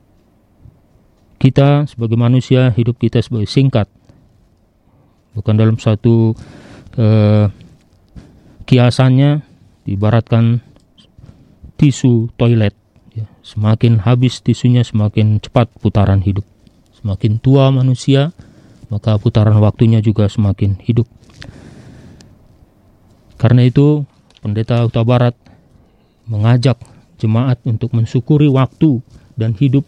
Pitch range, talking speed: 105-125 Hz, 85 wpm